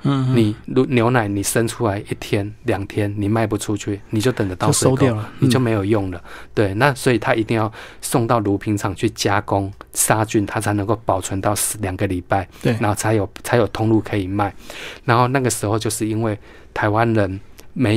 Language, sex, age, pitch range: Chinese, male, 20-39, 100-115 Hz